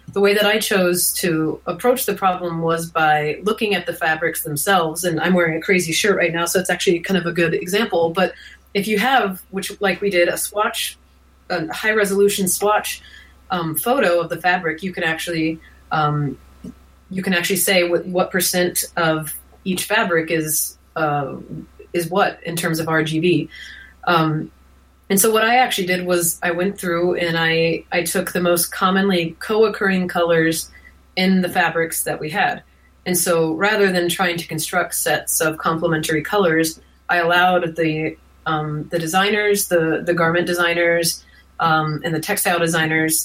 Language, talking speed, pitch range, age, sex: English, 175 wpm, 160-190 Hz, 30-49, female